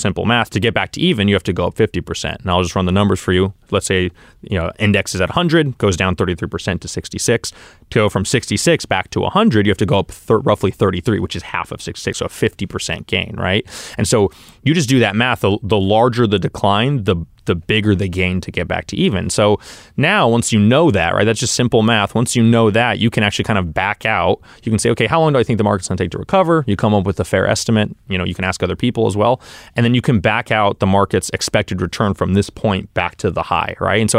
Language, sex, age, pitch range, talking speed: English, male, 20-39, 95-115 Hz, 270 wpm